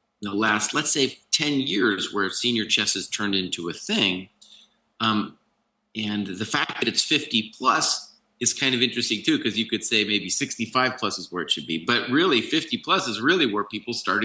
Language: English